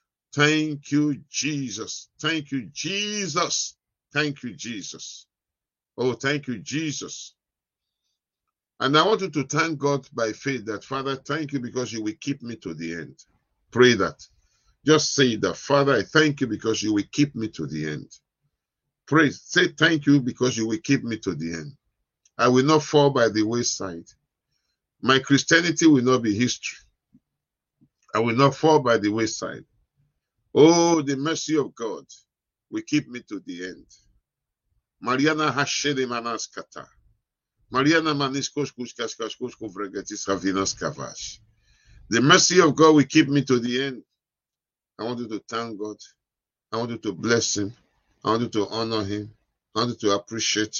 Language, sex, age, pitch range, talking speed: English, male, 50-69, 110-145 Hz, 150 wpm